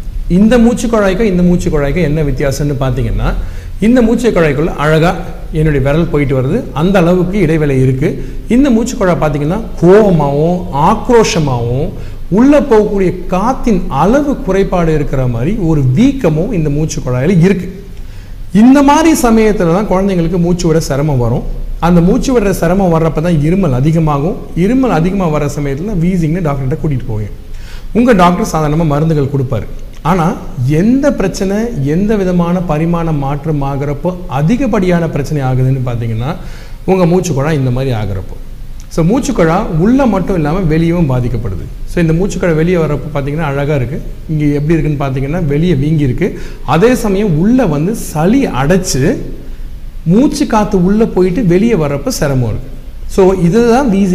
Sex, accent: male, native